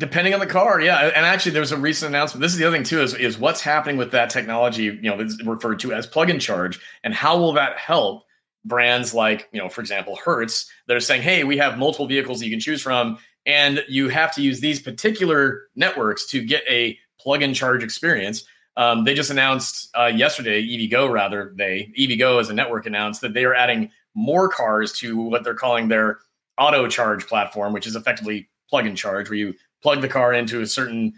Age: 30-49